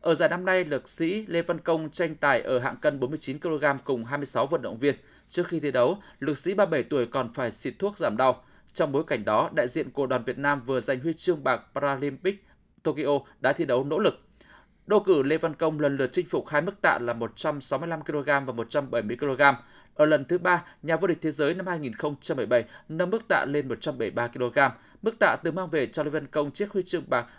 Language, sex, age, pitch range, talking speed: Vietnamese, male, 20-39, 140-180 Hz, 220 wpm